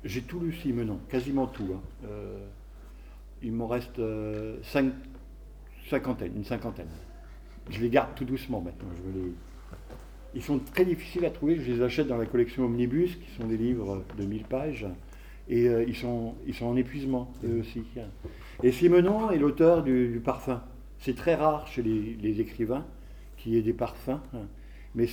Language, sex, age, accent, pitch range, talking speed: French, male, 50-69, French, 110-135 Hz, 175 wpm